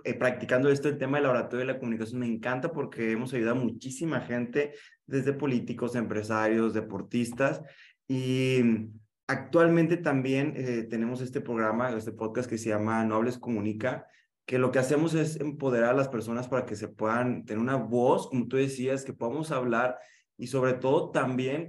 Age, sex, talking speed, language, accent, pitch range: 20-39, male, 175 wpm, Spanish, Mexican, 115-145 Hz